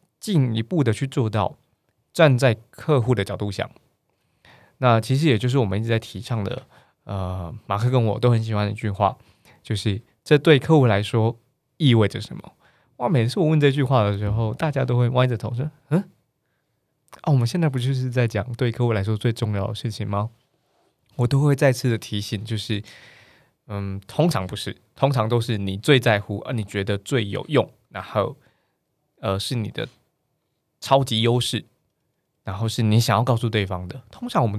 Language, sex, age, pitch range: Chinese, male, 20-39, 110-140 Hz